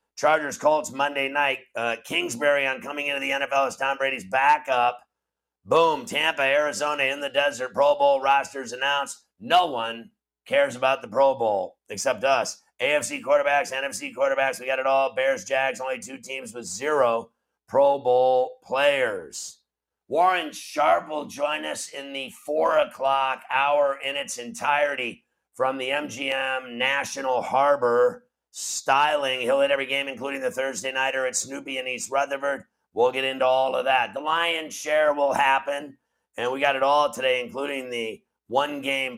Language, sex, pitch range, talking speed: English, male, 130-150 Hz, 160 wpm